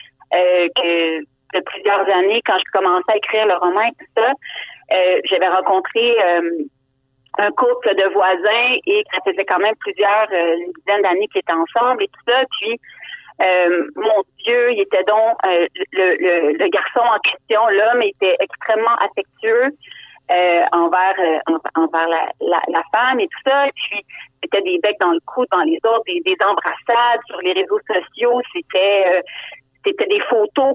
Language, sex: French, female